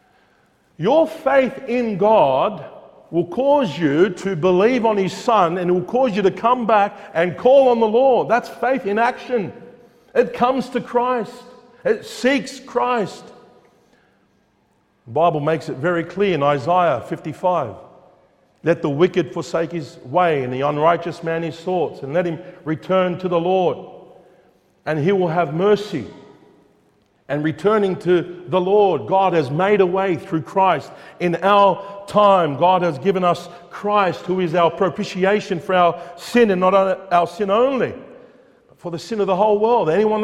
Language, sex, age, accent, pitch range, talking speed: English, male, 50-69, Australian, 170-215 Hz, 165 wpm